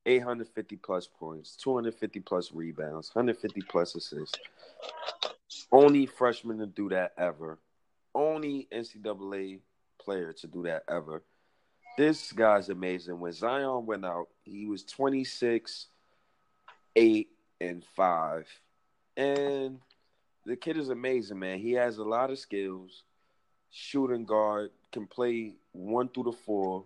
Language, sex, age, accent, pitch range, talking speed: English, male, 30-49, American, 95-130 Hz, 115 wpm